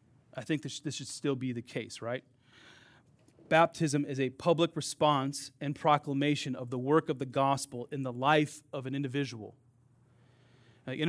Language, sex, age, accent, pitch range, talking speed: English, male, 30-49, American, 125-155 Hz, 155 wpm